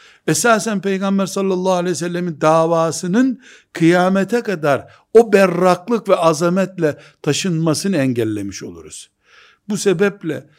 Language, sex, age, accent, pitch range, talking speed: Turkish, male, 60-79, native, 145-200 Hz, 100 wpm